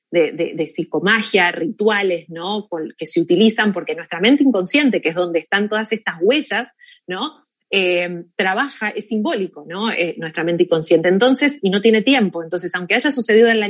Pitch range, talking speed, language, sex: 175-225 Hz, 180 wpm, Spanish, female